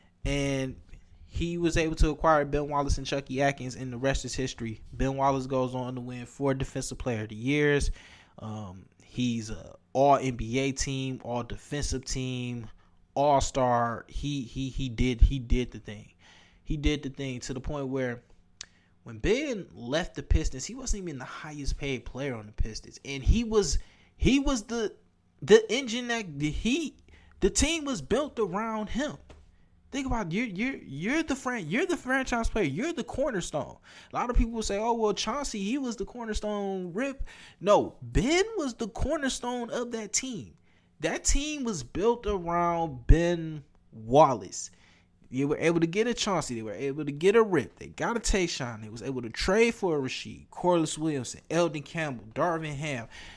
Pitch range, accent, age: 125-205 Hz, American, 20-39